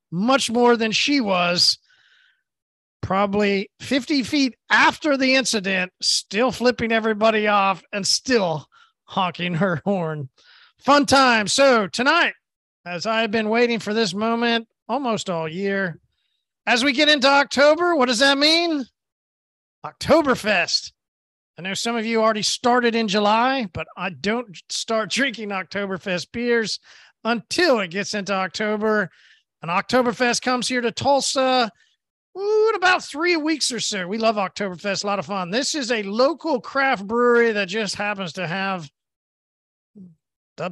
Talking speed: 145 wpm